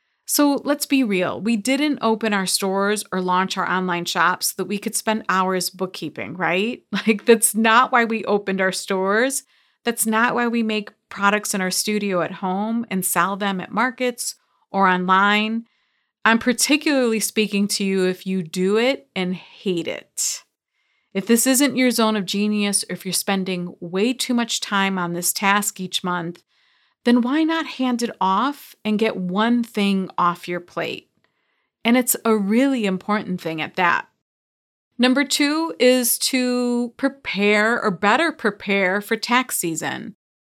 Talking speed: 165 wpm